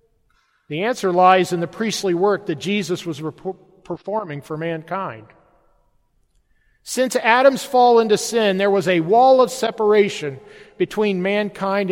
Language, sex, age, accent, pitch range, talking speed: English, male, 50-69, American, 170-215 Hz, 130 wpm